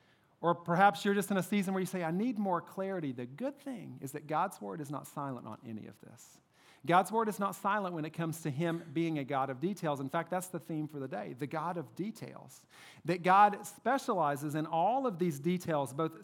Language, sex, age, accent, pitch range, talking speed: English, male, 40-59, American, 145-180 Hz, 235 wpm